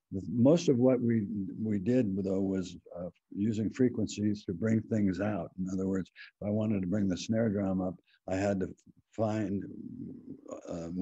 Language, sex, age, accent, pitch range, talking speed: English, male, 60-79, American, 90-105 Hz, 175 wpm